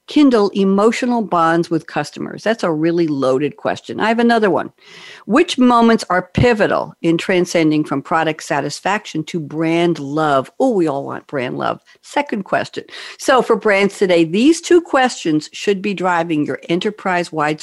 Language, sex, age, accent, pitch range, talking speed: English, female, 60-79, American, 165-230 Hz, 155 wpm